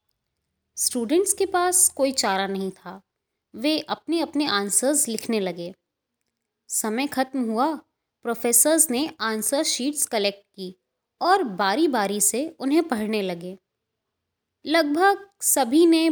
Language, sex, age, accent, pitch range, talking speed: Hindi, female, 20-39, native, 200-320 Hz, 120 wpm